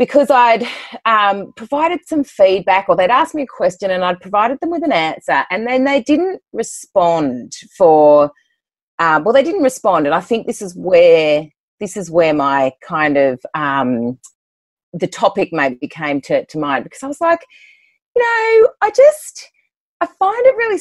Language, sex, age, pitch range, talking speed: English, female, 30-49, 170-275 Hz, 180 wpm